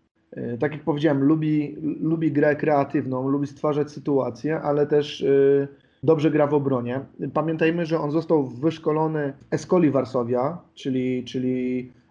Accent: native